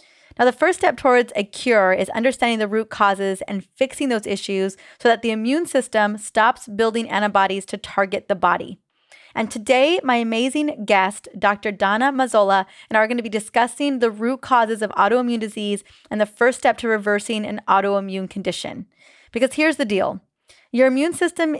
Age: 20-39